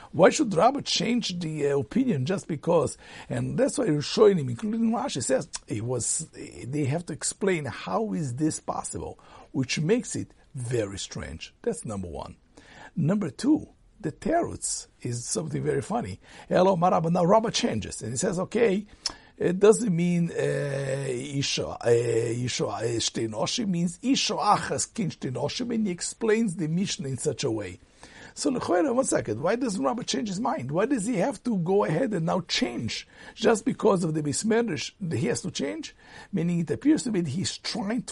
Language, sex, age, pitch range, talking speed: English, male, 60-79, 130-215 Hz, 170 wpm